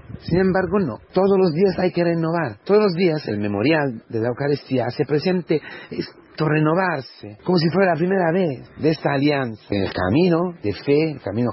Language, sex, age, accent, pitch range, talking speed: Spanish, male, 40-59, Mexican, 110-155 Hz, 185 wpm